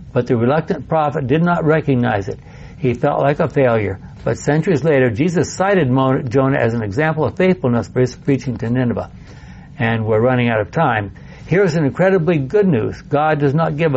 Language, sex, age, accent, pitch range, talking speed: English, male, 60-79, American, 120-150 Hz, 190 wpm